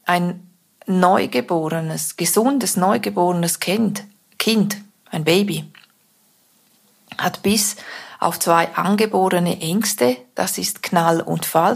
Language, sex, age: German, female, 40-59